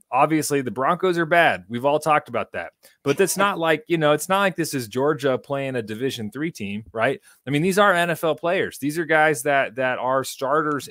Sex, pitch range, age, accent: male, 130-160 Hz, 30-49, American